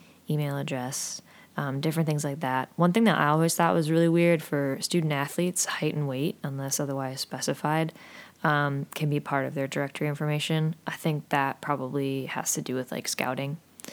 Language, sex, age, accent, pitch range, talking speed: English, female, 20-39, American, 140-170 Hz, 185 wpm